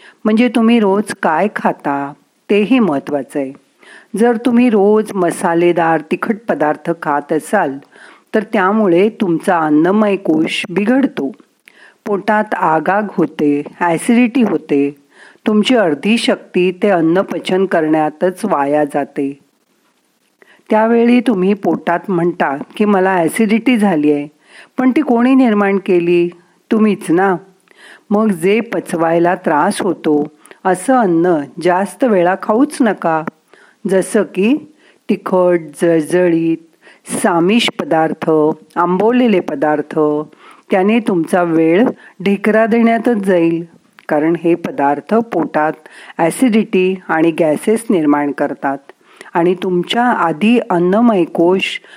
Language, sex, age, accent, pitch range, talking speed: Marathi, female, 40-59, native, 165-220 Hz, 105 wpm